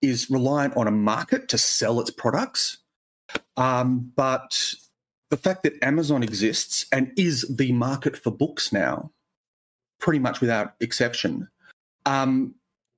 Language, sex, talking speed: English, male, 130 wpm